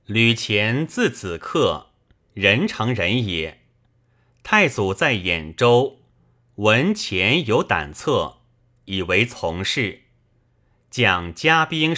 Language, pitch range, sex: Chinese, 105-135 Hz, male